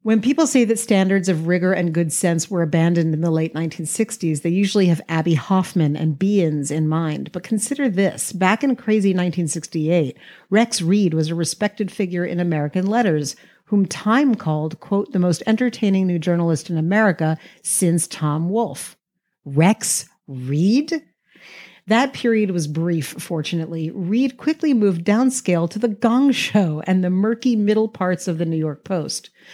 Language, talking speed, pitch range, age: English, 165 wpm, 165-205 Hz, 50-69